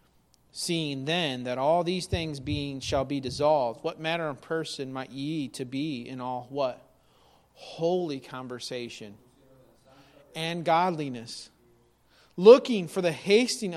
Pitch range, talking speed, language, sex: 130-190 Hz, 125 wpm, English, male